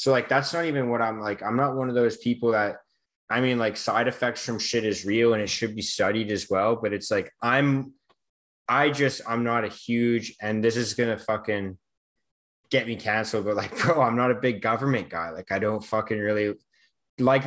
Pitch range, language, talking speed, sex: 110-130 Hz, English, 225 wpm, male